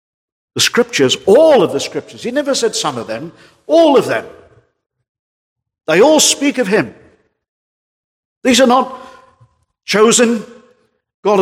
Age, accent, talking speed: 50-69, British, 130 wpm